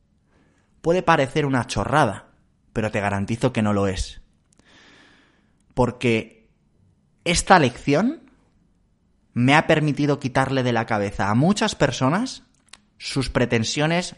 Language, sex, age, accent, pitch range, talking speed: Spanish, male, 30-49, Spanish, 105-145 Hz, 110 wpm